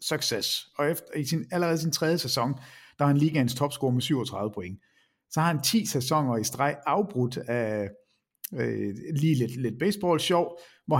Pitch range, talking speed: 120-155 Hz, 180 wpm